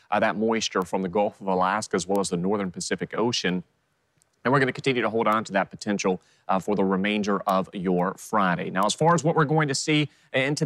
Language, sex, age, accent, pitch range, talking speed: English, male, 30-49, American, 100-140 Hz, 240 wpm